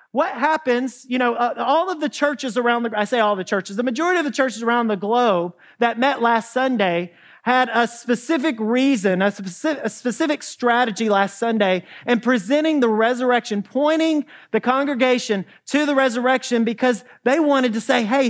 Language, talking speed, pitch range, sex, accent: English, 175 wpm, 215-270 Hz, male, American